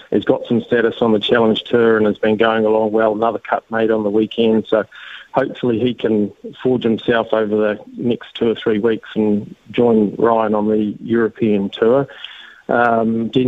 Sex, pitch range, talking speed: male, 110-125 Hz, 185 wpm